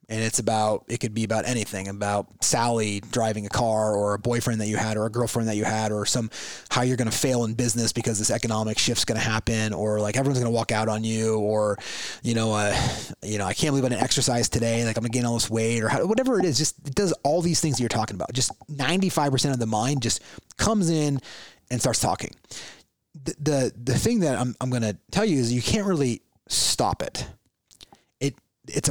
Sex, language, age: male, English, 30-49